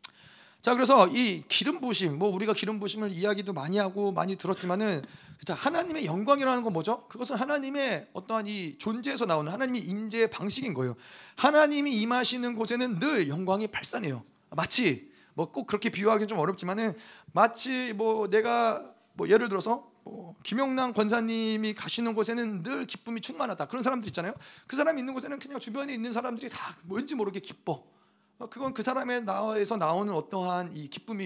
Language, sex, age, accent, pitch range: Korean, male, 40-59, native, 195-250 Hz